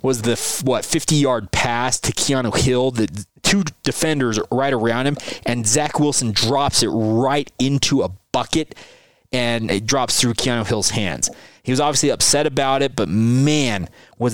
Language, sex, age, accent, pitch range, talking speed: English, male, 20-39, American, 120-145 Hz, 165 wpm